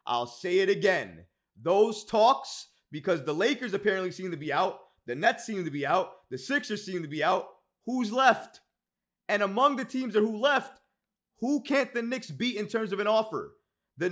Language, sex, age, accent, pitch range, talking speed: English, male, 30-49, American, 160-215 Hz, 200 wpm